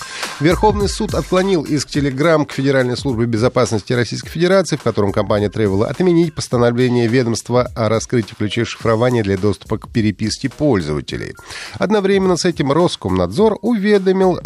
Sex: male